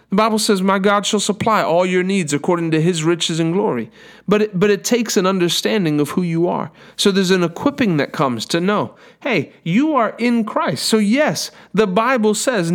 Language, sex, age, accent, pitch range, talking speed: English, male, 40-59, American, 165-230 Hz, 210 wpm